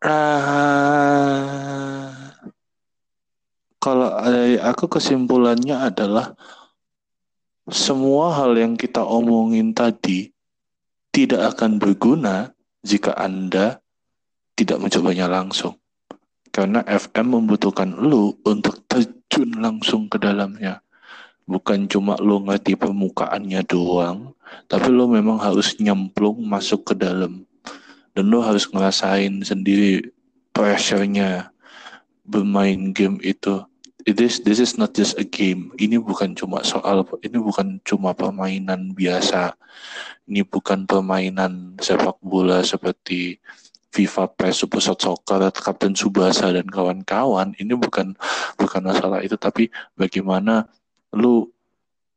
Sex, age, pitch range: male, 20-39, 95-120 Hz